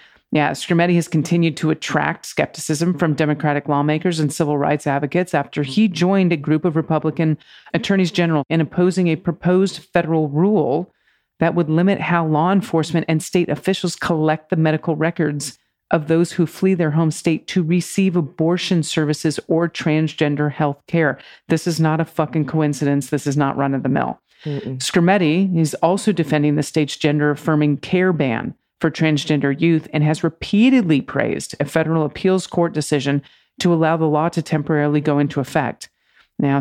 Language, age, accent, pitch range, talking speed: English, 40-59, American, 150-170 Hz, 160 wpm